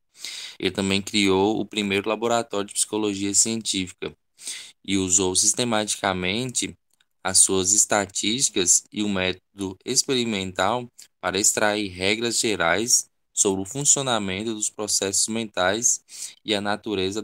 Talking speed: 110 wpm